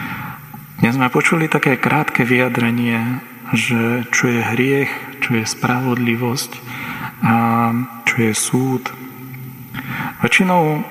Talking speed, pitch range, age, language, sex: 100 wpm, 120-130 Hz, 40-59, Slovak, male